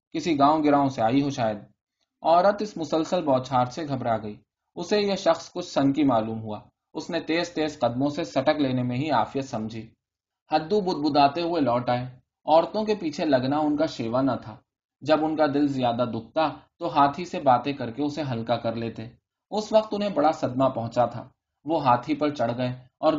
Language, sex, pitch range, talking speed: Urdu, male, 120-155 Hz, 200 wpm